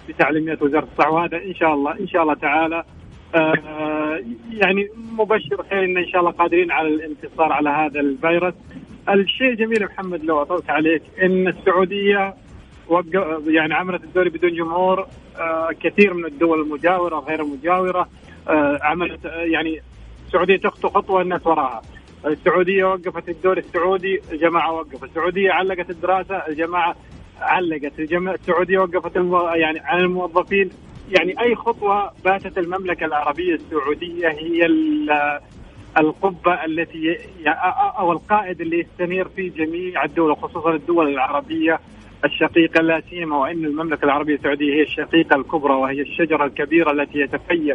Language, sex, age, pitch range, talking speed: Arabic, male, 30-49, 155-180 Hz, 130 wpm